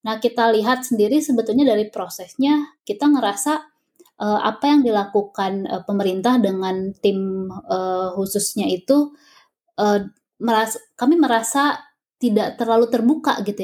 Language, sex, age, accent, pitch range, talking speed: Indonesian, female, 20-39, native, 195-240 Hz, 125 wpm